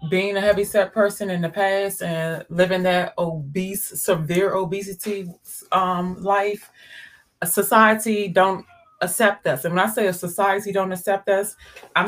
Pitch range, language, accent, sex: 175-210 Hz, English, American, female